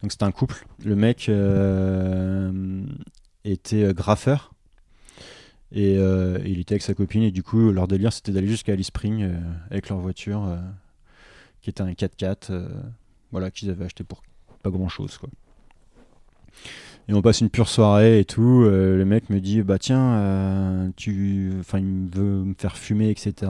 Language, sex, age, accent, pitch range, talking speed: French, male, 20-39, French, 95-110 Hz, 170 wpm